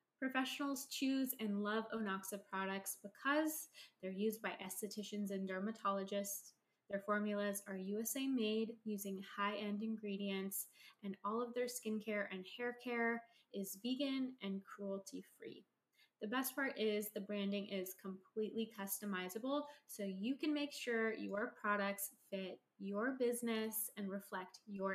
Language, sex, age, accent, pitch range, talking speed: English, female, 20-39, American, 200-245 Hz, 130 wpm